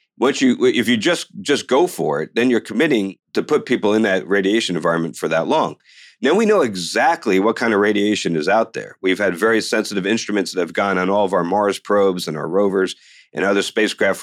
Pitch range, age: 90-105 Hz, 50-69